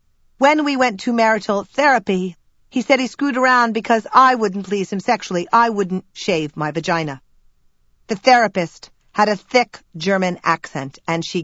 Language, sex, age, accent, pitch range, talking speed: English, female, 40-59, American, 160-230 Hz, 165 wpm